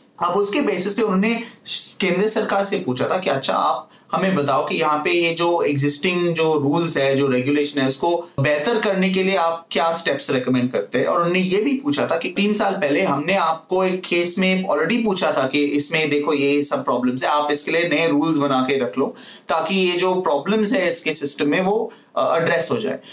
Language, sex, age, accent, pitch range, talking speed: Hindi, male, 30-49, native, 140-200 Hz, 220 wpm